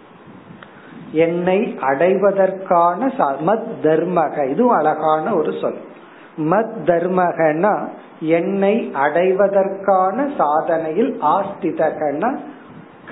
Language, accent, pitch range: Tamil, native, 155-205 Hz